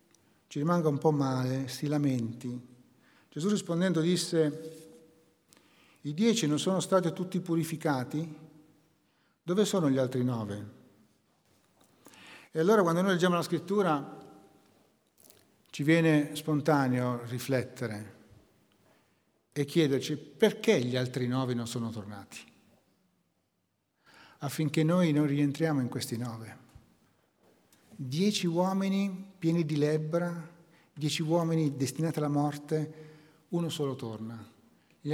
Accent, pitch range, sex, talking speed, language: native, 130-185 Hz, male, 110 wpm, Italian